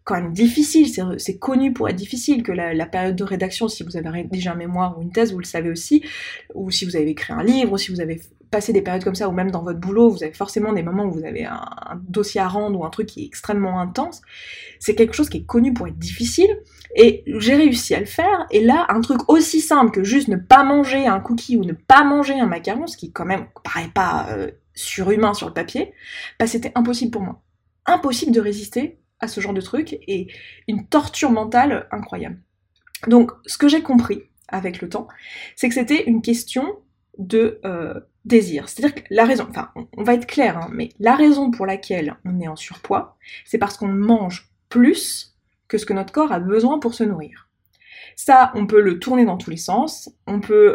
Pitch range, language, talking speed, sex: 190-260 Hz, French, 230 wpm, female